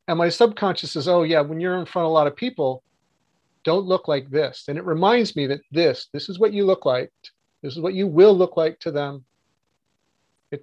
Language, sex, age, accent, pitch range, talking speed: English, male, 40-59, American, 140-170 Hz, 230 wpm